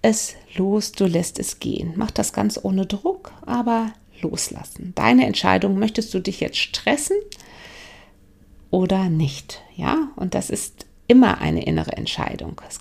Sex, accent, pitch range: female, German, 180-245 Hz